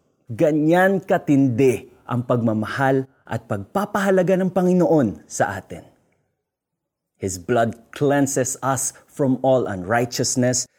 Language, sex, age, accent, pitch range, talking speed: Filipino, male, 20-39, native, 110-140 Hz, 95 wpm